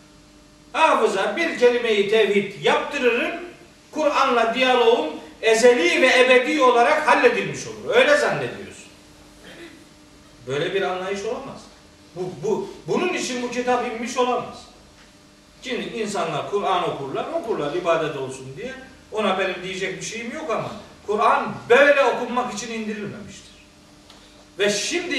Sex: male